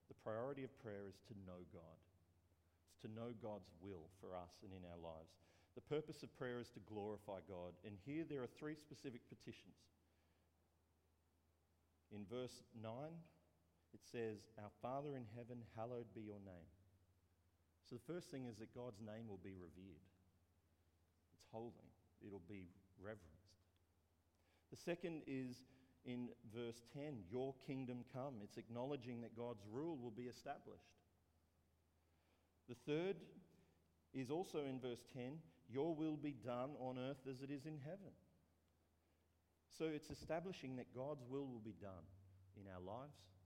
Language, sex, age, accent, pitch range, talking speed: English, male, 50-69, Australian, 85-125 Hz, 150 wpm